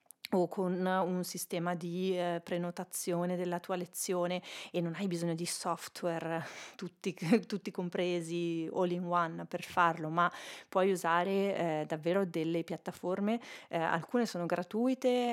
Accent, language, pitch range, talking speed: native, Italian, 170-200 Hz, 135 wpm